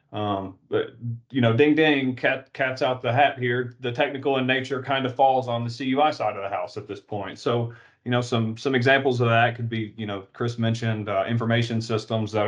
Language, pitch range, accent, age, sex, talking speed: English, 105-130 Hz, American, 30-49, male, 225 wpm